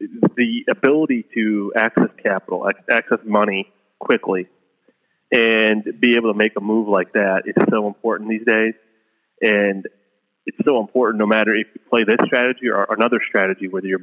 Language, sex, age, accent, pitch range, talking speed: English, male, 30-49, American, 100-120 Hz, 165 wpm